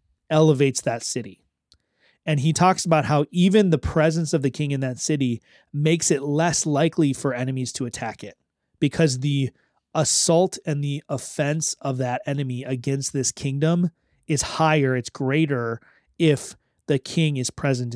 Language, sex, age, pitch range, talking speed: English, male, 30-49, 130-155 Hz, 155 wpm